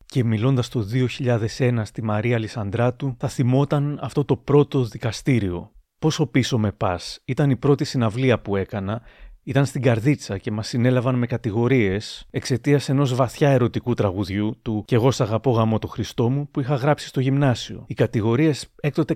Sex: male